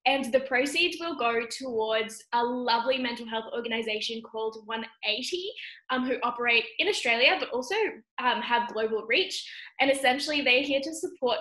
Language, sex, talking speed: English, female, 160 wpm